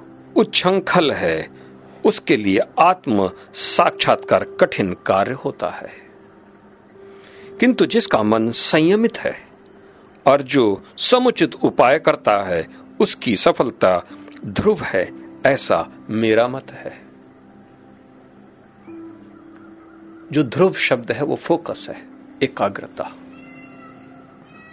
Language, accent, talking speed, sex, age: Hindi, native, 90 wpm, male, 50-69